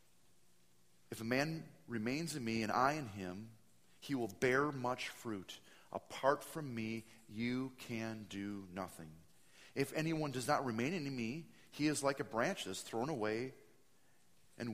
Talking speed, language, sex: 160 wpm, English, male